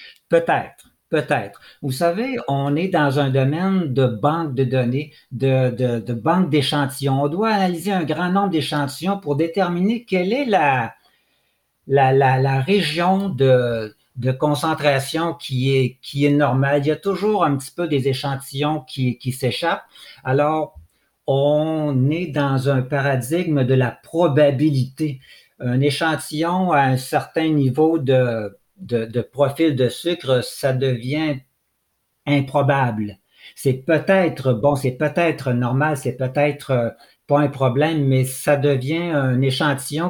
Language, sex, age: French, male, 60-79